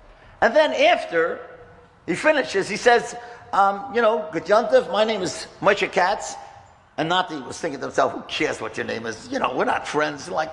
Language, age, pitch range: English, 50-69, 170-265 Hz